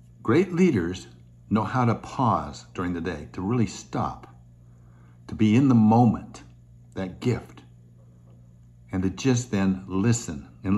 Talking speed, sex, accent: 140 wpm, male, American